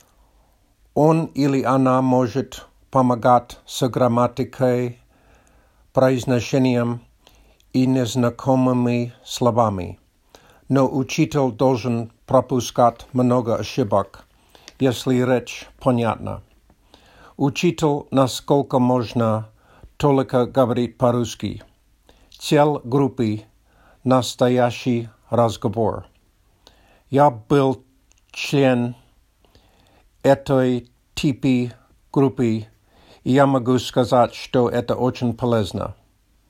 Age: 50-69